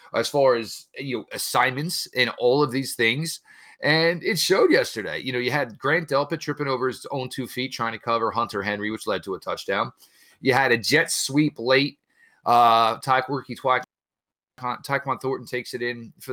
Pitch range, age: 125-175 Hz, 30-49